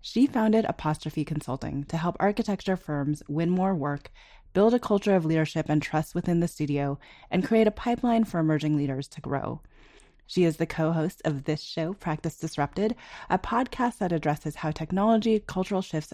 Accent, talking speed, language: American, 175 wpm, English